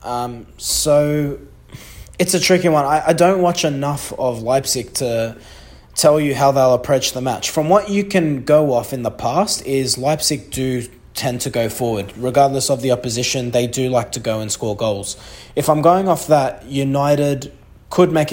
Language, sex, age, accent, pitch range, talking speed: English, male, 20-39, Australian, 120-150 Hz, 185 wpm